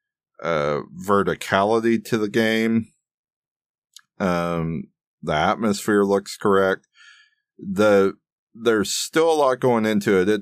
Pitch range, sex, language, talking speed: 80-105 Hz, male, English, 110 wpm